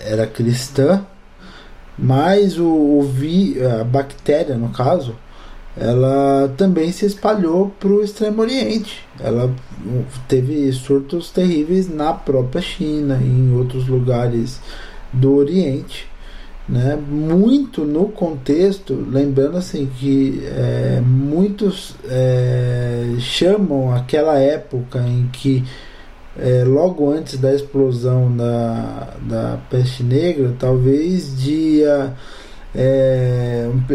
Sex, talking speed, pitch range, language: male, 105 wpm, 125-155 Hz, Portuguese